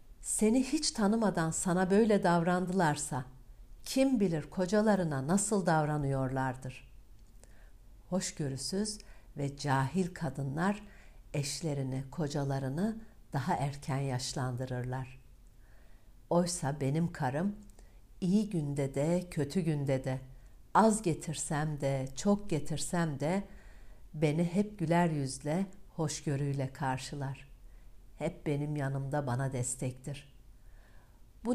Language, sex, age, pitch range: Turkish, female, 60-79, 130-185 Hz